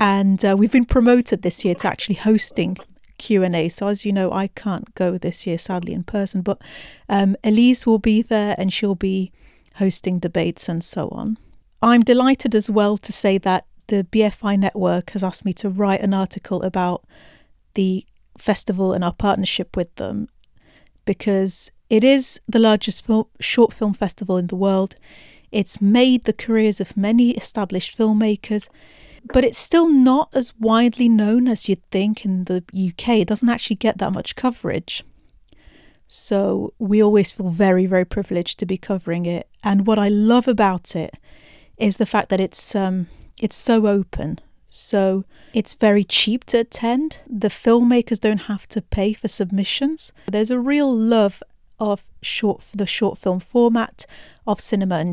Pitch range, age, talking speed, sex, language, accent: 190-225 Hz, 40-59, 170 wpm, female, English, British